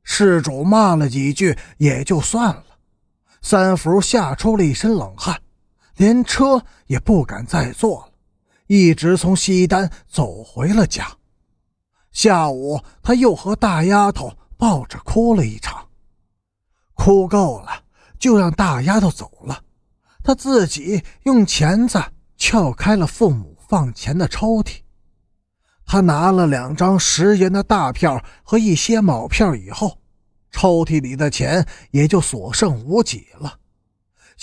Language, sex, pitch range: Chinese, male, 125-215 Hz